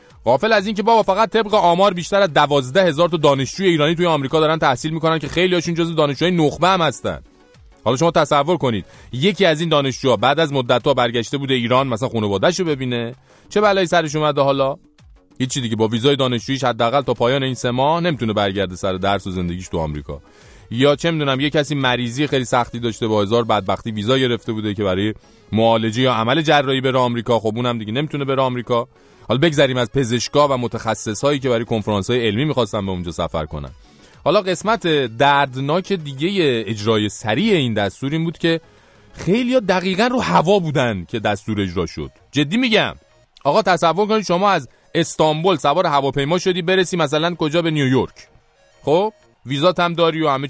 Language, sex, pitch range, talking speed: English, male, 120-175 Hz, 185 wpm